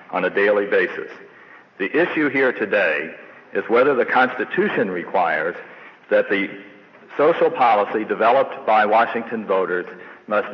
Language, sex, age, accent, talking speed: English, male, 60-79, American, 125 wpm